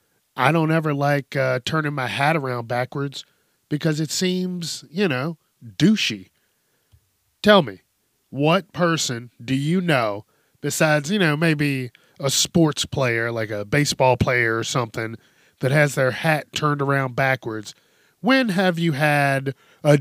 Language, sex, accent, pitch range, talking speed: English, male, American, 130-170 Hz, 145 wpm